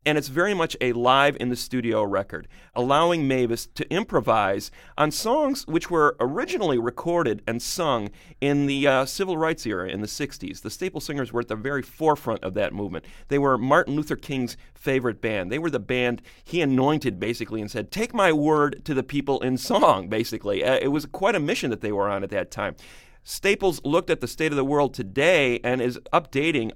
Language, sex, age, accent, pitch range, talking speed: English, male, 30-49, American, 110-140 Hz, 200 wpm